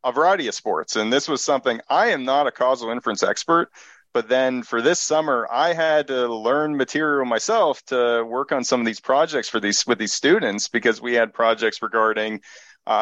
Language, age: English, 30-49